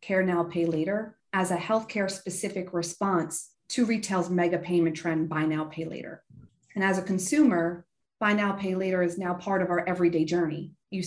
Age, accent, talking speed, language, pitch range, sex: 30-49, American, 185 wpm, English, 170-205 Hz, female